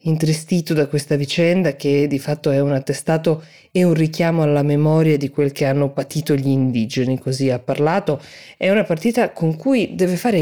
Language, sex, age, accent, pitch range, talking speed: Italian, female, 20-39, native, 145-170 Hz, 185 wpm